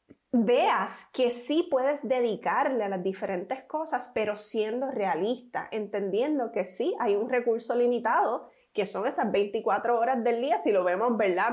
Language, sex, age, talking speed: Spanish, female, 20-39, 155 wpm